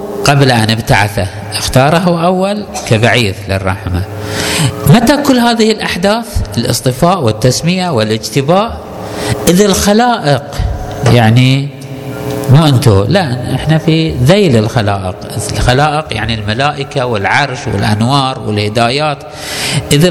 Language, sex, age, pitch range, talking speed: Arabic, male, 50-69, 105-155 Hz, 95 wpm